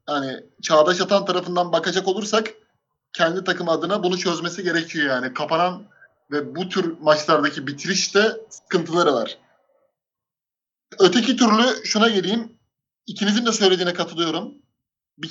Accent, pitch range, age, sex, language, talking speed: native, 155-185 Hz, 30-49, male, Turkish, 120 wpm